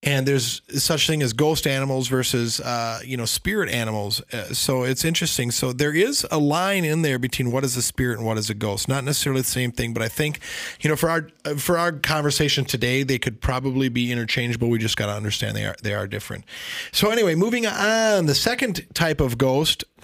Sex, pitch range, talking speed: male, 120-150 Hz, 225 wpm